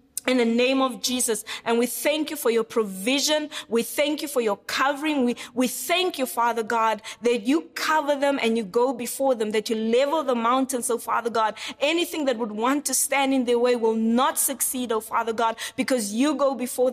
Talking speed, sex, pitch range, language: 215 wpm, female, 235-275 Hz, English